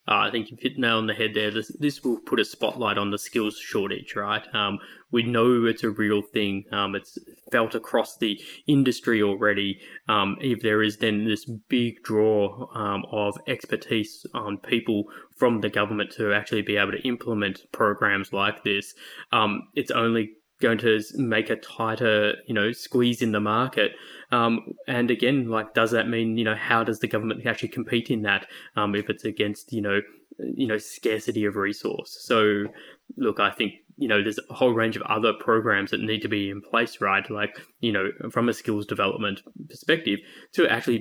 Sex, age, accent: male, 20-39, Australian